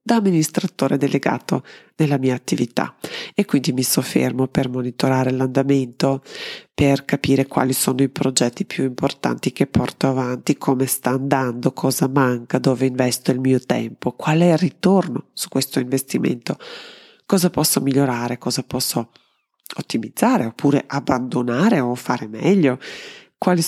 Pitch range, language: 130-160 Hz, Italian